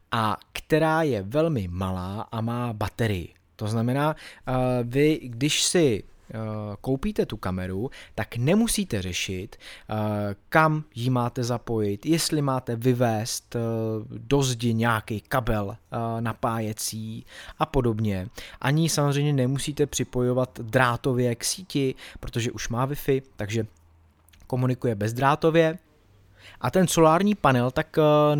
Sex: male